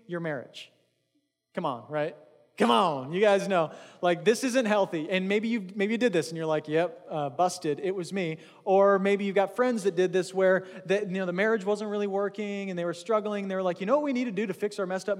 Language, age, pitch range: English, 20-39, 170-220 Hz